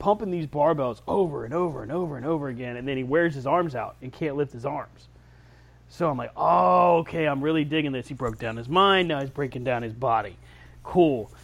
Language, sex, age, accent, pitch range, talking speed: English, male, 30-49, American, 115-160 Hz, 230 wpm